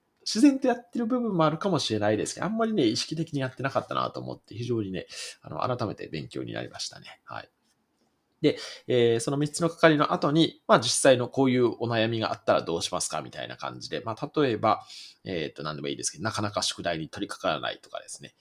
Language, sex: Japanese, male